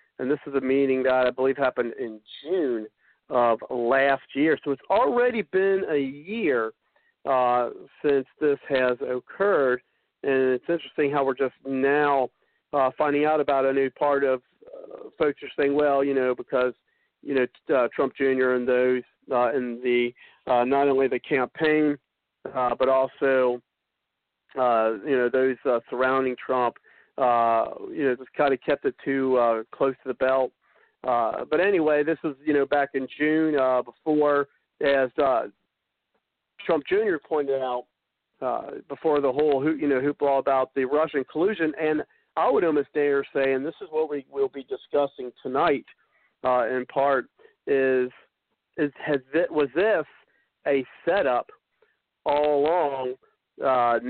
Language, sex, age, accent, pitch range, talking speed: English, male, 50-69, American, 130-150 Hz, 160 wpm